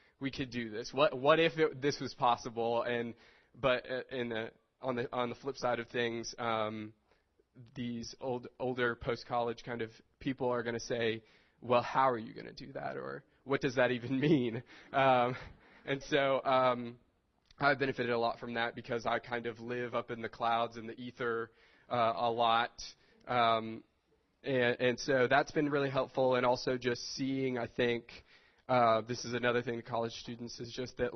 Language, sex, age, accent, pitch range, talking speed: English, male, 20-39, American, 115-130 Hz, 190 wpm